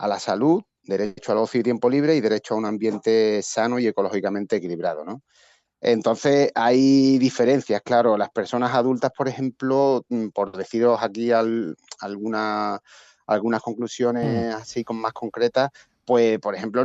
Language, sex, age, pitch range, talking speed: Spanish, male, 30-49, 100-125 Hz, 150 wpm